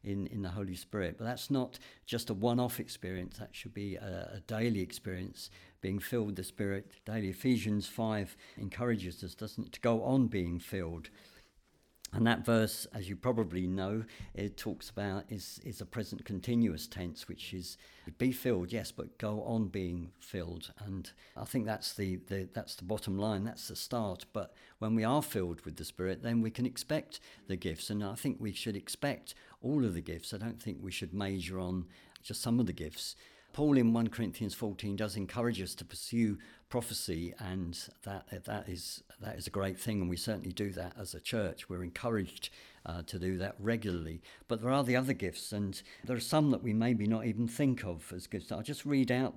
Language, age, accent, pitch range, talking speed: English, 60-79, British, 95-115 Hz, 205 wpm